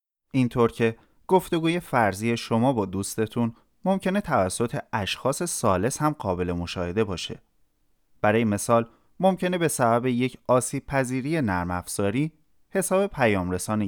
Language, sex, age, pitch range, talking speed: Persian, male, 30-49, 100-155 Hz, 115 wpm